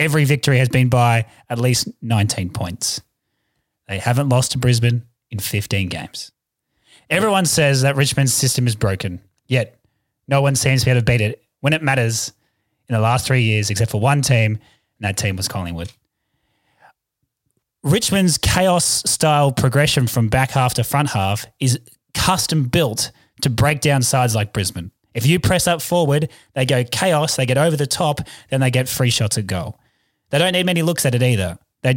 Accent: Australian